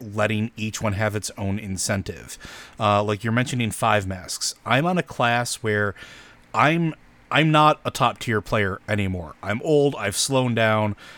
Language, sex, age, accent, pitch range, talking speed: English, male, 30-49, American, 100-120 Hz, 160 wpm